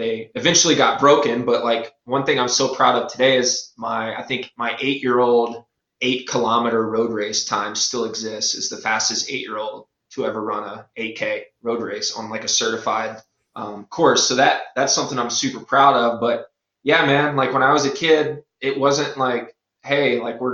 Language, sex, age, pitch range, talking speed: English, male, 20-39, 115-140 Hz, 190 wpm